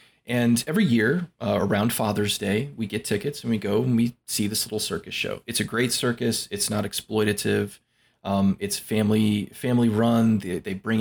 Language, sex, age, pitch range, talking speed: English, male, 20-39, 100-120 Hz, 190 wpm